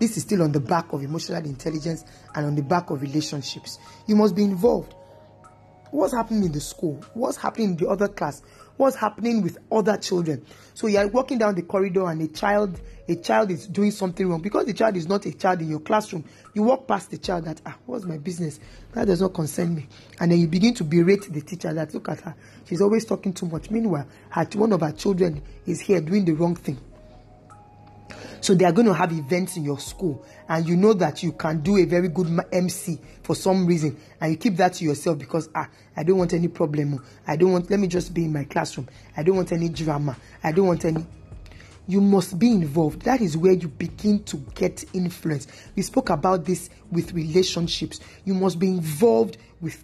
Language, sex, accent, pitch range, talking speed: English, male, Nigerian, 155-195 Hz, 220 wpm